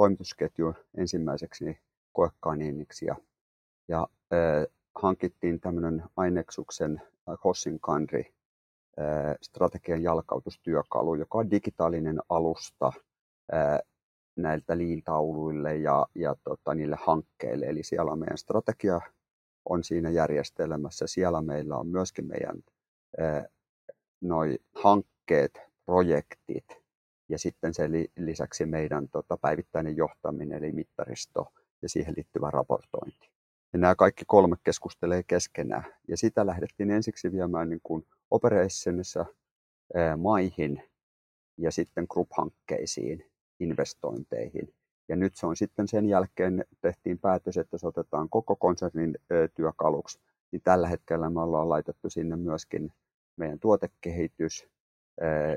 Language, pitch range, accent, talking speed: Finnish, 80-90 Hz, native, 105 wpm